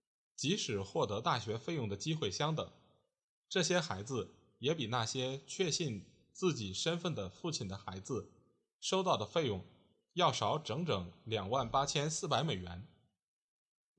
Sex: male